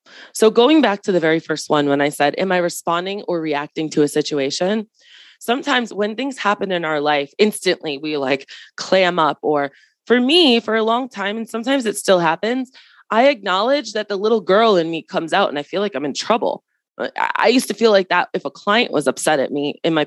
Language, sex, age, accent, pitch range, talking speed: English, female, 20-39, American, 170-225 Hz, 225 wpm